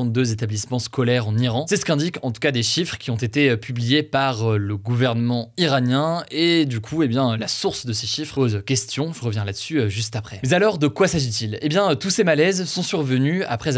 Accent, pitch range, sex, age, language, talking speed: French, 115-155 Hz, male, 20-39, French, 220 wpm